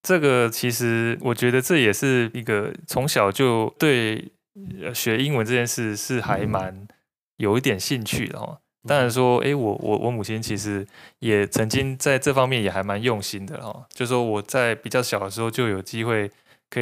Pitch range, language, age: 105-125 Hz, Chinese, 20-39